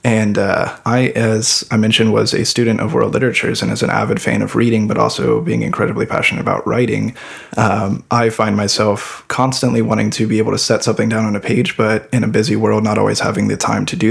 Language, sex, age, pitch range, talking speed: English, male, 20-39, 105-115 Hz, 230 wpm